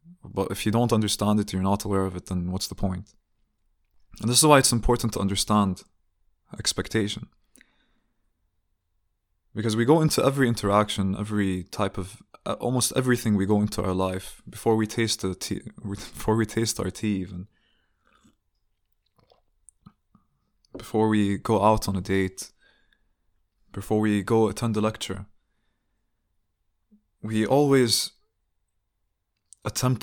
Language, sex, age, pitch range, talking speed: English, male, 20-39, 95-110 Hz, 135 wpm